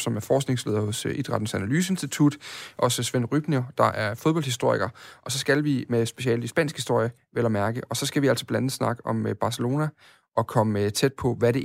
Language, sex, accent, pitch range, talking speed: Danish, male, native, 115-145 Hz, 205 wpm